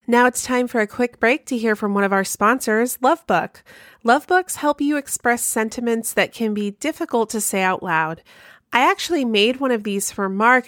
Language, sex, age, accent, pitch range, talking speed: English, female, 30-49, American, 195-255 Hz, 200 wpm